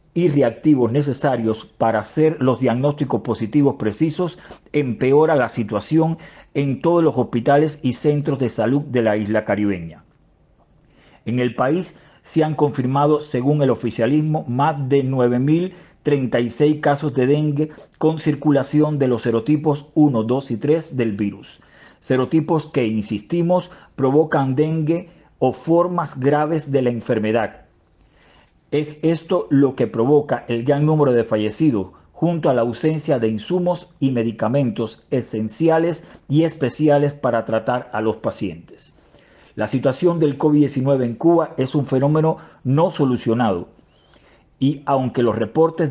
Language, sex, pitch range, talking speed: Spanish, male, 120-155 Hz, 135 wpm